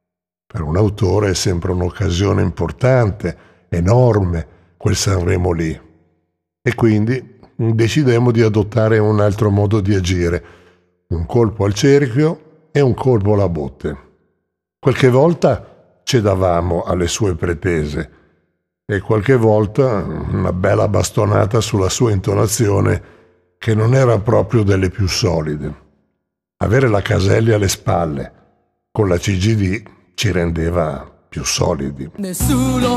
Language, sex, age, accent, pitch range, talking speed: Italian, male, 60-79, native, 90-115 Hz, 120 wpm